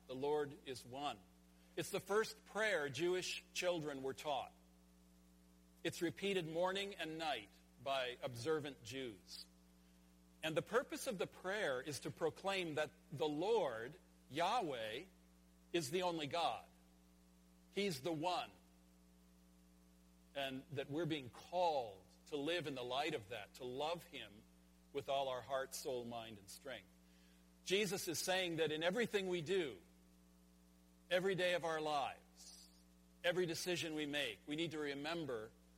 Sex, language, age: male, English, 50-69